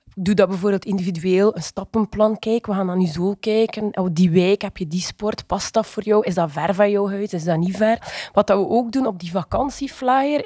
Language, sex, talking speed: English, female, 240 wpm